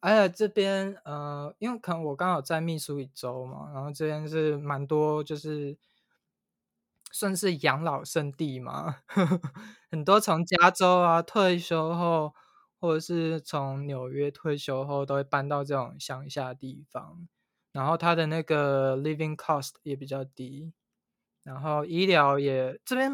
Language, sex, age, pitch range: Chinese, male, 20-39, 140-170 Hz